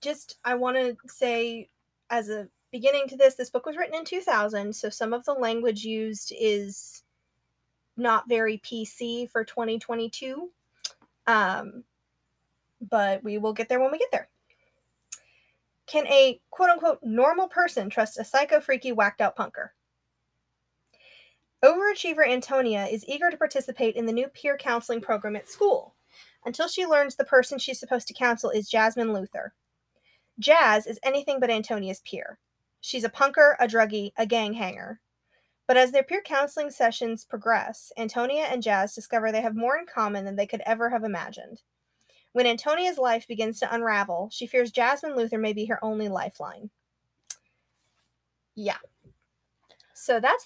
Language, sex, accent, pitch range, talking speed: English, female, American, 220-275 Hz, 150 wpm